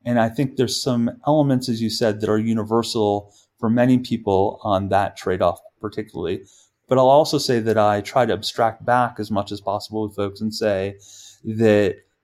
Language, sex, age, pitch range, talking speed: English, male, 30-49, 105-125 Hz, 190 wpm